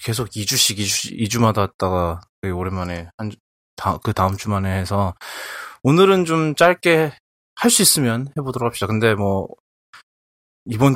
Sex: male